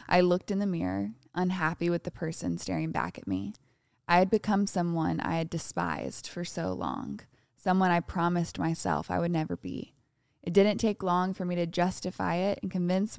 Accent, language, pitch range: American, English, 135-185 Hz